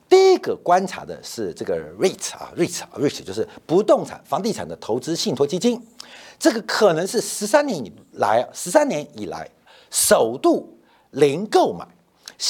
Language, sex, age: Chinese, male, 50-69